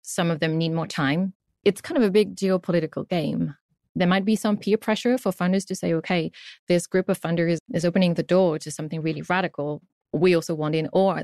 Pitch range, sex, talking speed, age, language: 155-185 Hz, female, 220 wpm, 20-39, English